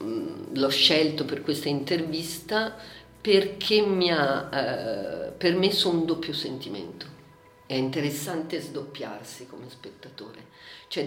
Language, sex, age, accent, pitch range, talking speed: Italian, female, 50-69, native, 140-190 Hz, 105 wpm